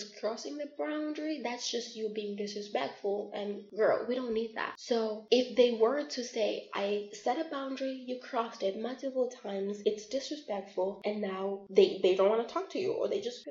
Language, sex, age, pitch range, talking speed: English, female, 20-39, 205-260 Hz, 200 wpm